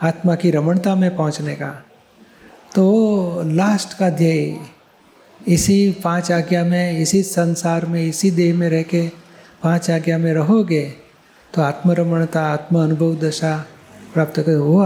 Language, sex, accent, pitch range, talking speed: Gujarati, male, native, 160-185 Hz, 105 wpm